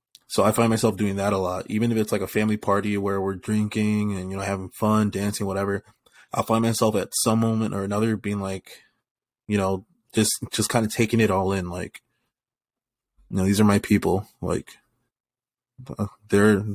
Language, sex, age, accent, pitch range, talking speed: English, male, 20-39, American, 95-110 Hz, 195 wpm